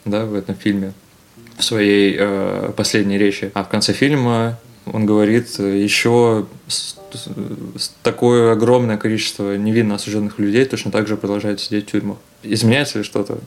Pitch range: 100-115 Hz